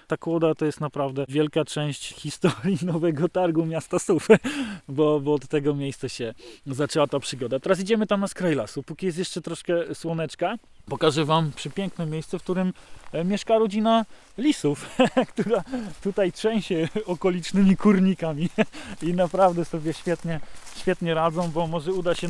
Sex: male